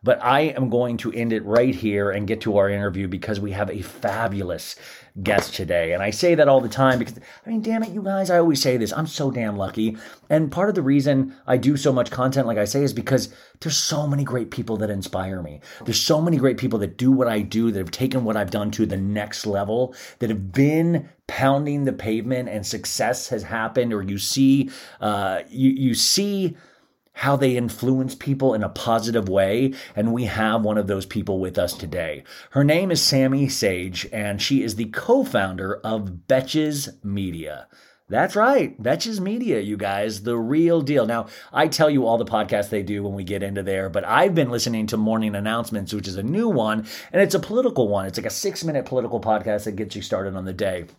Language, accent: English, American